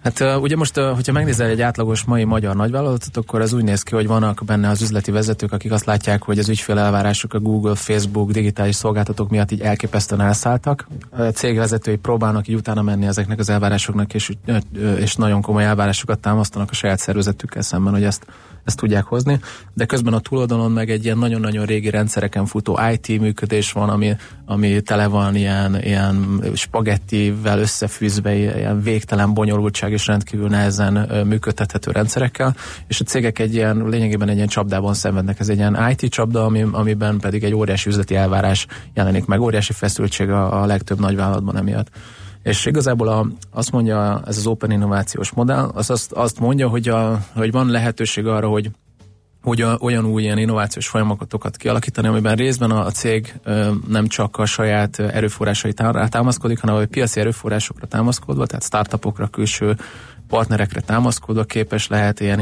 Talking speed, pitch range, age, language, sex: 165 wpm, 105-115 Hz, 30-49, Hungarian, male